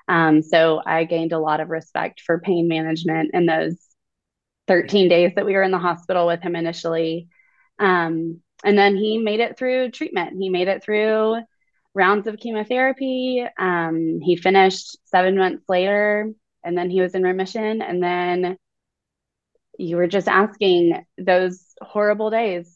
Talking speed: 160 wpm